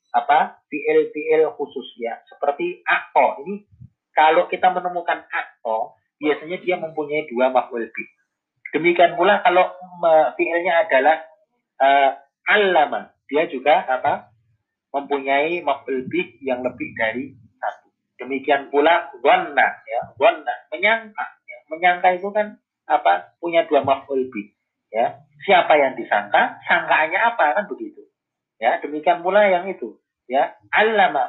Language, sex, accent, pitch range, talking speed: Indonesian, male, native, 135-200 Hz, 125 wpm